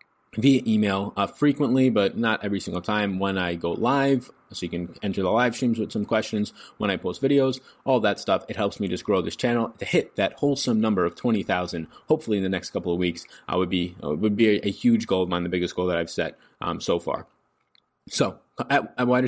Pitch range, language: 95-125 Hz, English